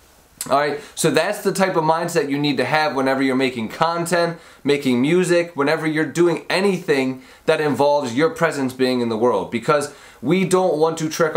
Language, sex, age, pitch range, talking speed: English, male, 20-39, 130-185 Hz, 190 wpm